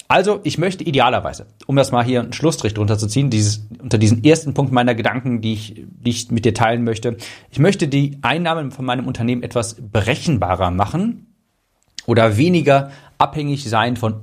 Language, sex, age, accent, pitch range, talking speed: German, male, 40-59, German, 110-145 Hz, 175 wpm